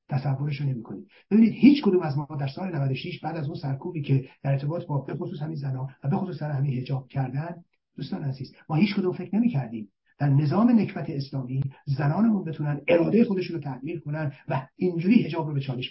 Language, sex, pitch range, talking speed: Persian, male, 140-195 Hz, 195 wpm